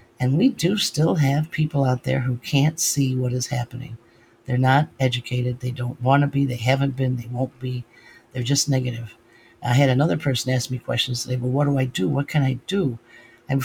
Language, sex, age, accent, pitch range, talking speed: English, male, 50-69, American, 125-140 Hz, 215 wpm